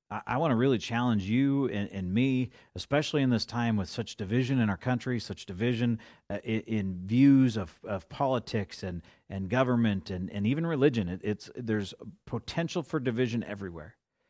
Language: English